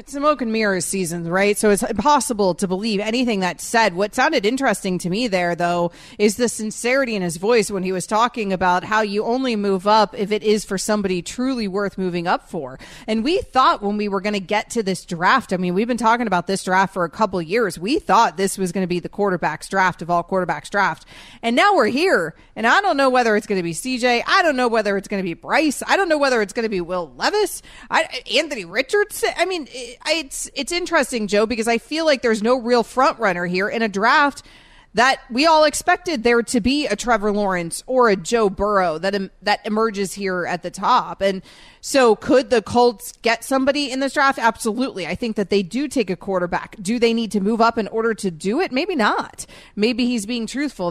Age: 30-49